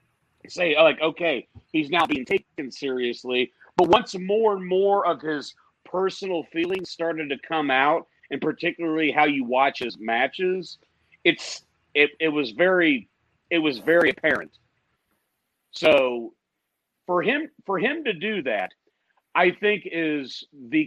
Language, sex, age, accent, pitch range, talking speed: English, male, 40-59, American, 160-215 Hz, 140 wpm